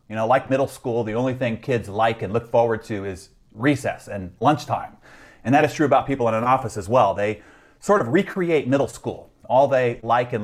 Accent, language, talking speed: American, English, 225 wpm